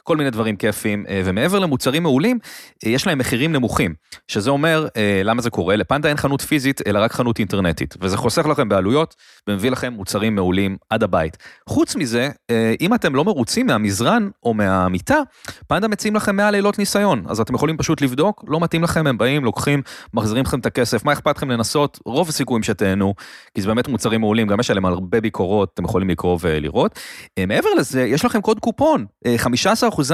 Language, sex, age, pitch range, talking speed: Hebrew, male, 30-49, 100-160 Hz, 145 wpm